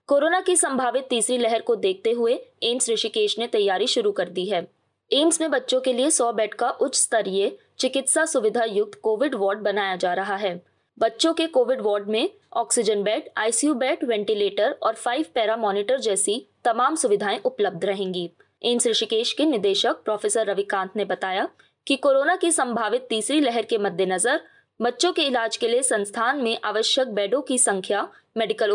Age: 20-39